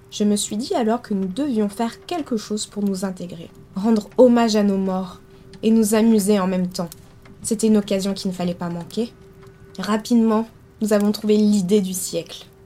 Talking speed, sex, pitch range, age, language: 190 wpm, female, 195-240 Hz, 20-39, French